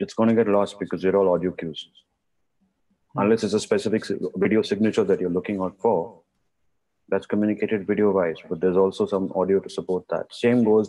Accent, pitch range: Indian, 95-110 Hz